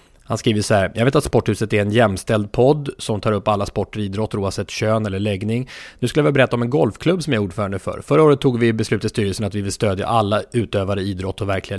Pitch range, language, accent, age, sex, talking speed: 110-130 Hz, English, Swedish, 30-49, male, 260 wpm